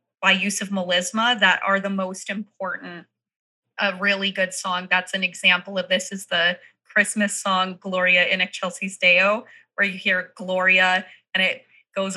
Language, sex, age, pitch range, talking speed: English, female, 20-39, 185-220 Hz, 170 wpm